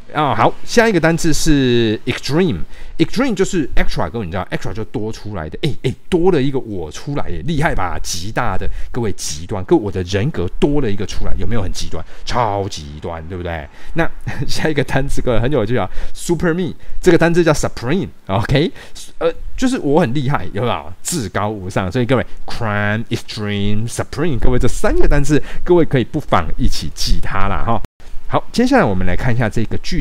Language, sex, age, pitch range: Chinese, male, 30-49, 95-140 Hz